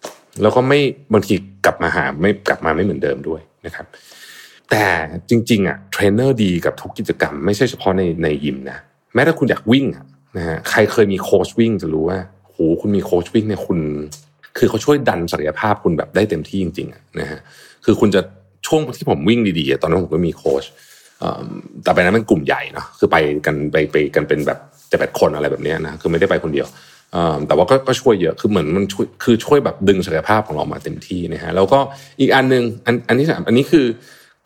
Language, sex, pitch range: Thai, male, 85-115 Hz